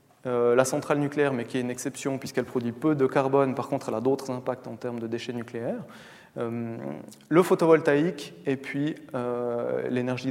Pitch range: 120-155 Hz